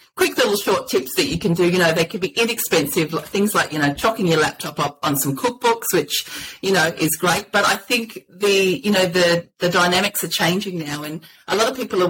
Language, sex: English, female